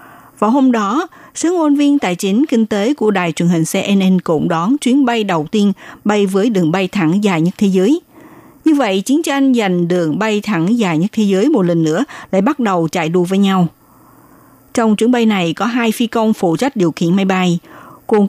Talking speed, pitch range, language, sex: 220 wpm, 180-245 Hz, Vietnamese, female